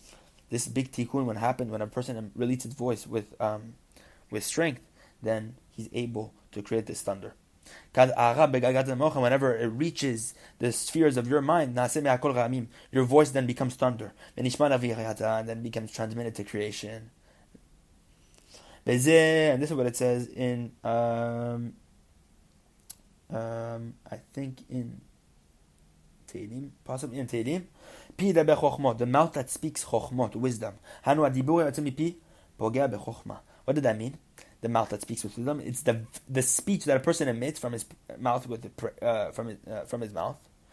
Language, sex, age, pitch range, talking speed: English, male, 20-39, 115-140 Hz, 120 wpm